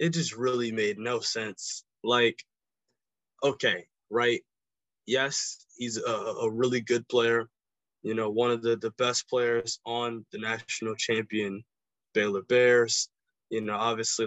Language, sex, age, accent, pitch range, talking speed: English, male, 20-39, American, 110-130 Hz, 140 wpm